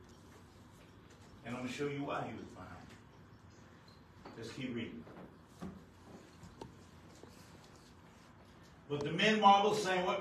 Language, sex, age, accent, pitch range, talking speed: English, male, 60-79, American, 120-175 Hz, 110 wpm